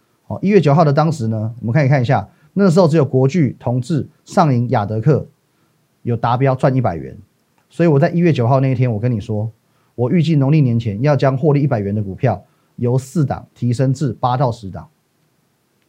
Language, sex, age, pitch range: Chinese, male, 30-49, 115-155 Hz